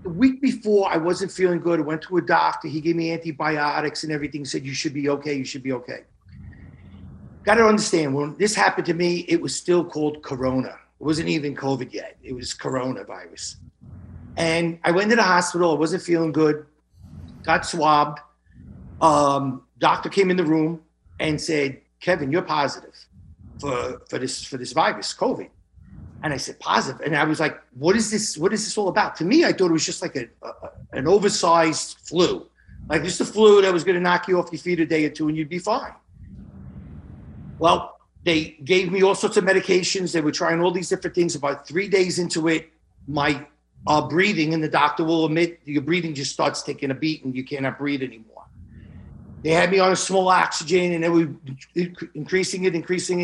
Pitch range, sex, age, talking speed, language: 145-180 Hz, male, 50-69, 205 wpm, English